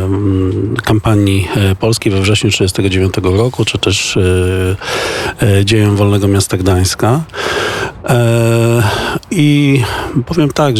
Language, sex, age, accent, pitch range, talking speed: Polish, male, 40-59, native, 95-115 Hz, 85 wpm